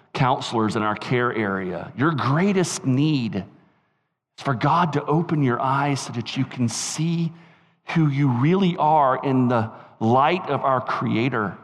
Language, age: English, 40-59